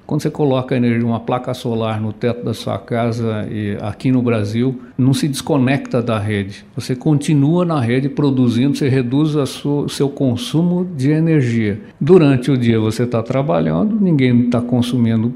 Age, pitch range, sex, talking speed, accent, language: 60-79, 120-150 Hz, male, 155 wpm, Brazilian, Portuguese